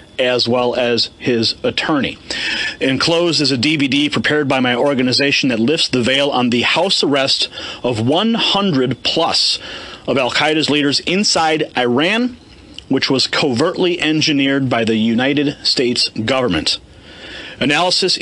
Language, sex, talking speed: English, male, 125 wpm